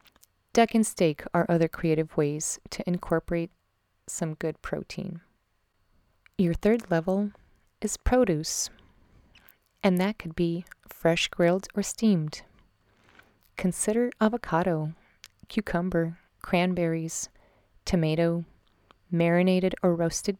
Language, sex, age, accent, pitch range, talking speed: English, female, 30-49, American, 165-195 Hz, 95 wpm